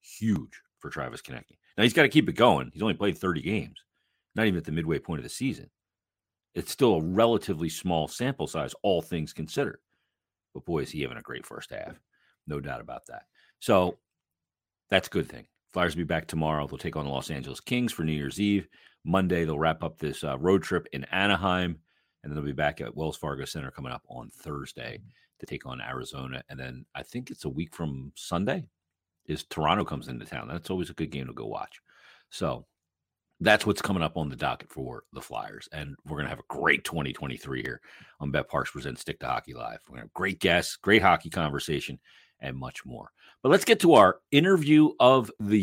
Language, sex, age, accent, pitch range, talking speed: English, male, 40-59, American, 75-105 Hz, 220 wpm